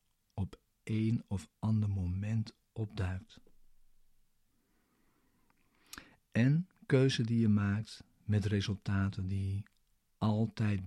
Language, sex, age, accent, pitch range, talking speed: Dutch, male, 50-69, Dutch, 100-115 Hz, 75 wpm